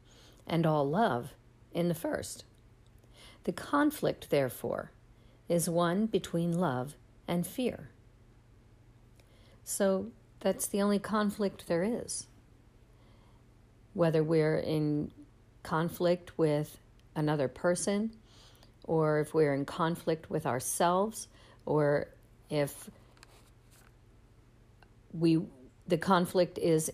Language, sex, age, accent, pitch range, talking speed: English, female, 50-69, American, 115-175 Hz, 95 wpm